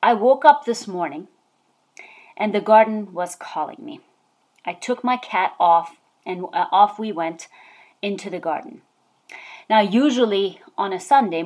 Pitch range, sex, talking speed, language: 170-235 Hz, female, 145 wpm, English